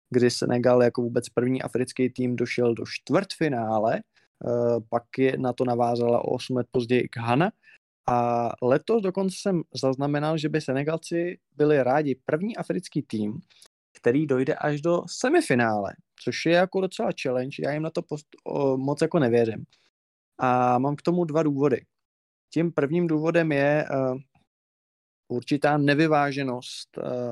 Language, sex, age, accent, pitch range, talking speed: Czech, male, 20-39, native, 125-150 Hz, 145 wpm